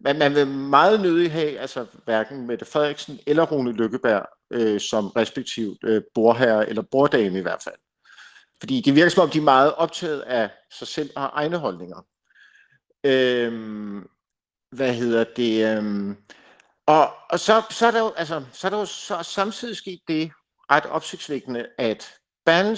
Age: 50-69